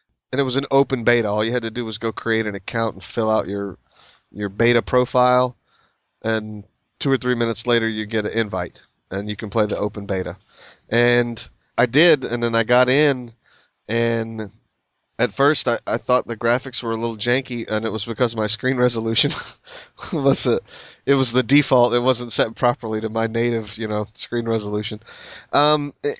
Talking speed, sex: 195 wpm, male